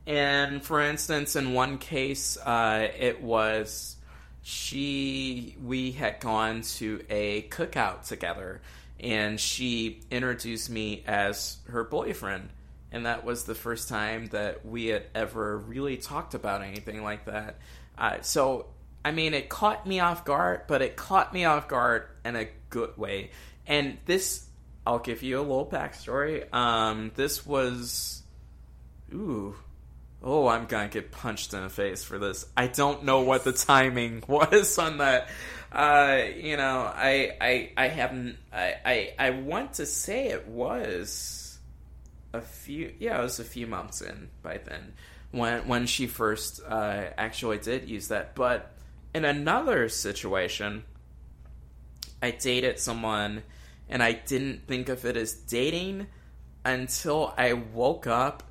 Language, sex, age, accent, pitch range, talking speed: English, male, 20-39, American, 100-135 Hz, 150 wpm